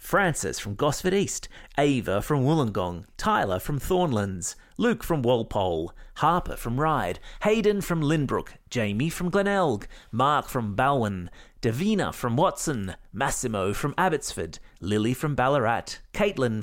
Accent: Australian